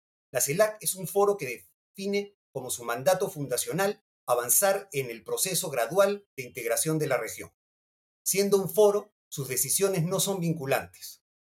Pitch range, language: 145-200 Hz, Spanish